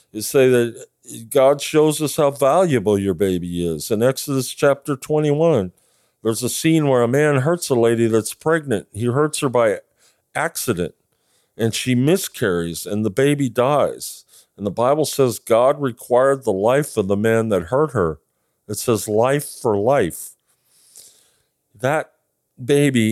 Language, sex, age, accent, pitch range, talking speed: English, male, 50-69, American, 110-145 Hz, 155 wpm